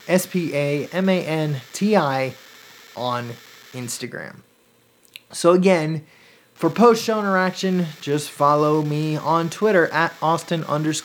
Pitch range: 145-180 Hz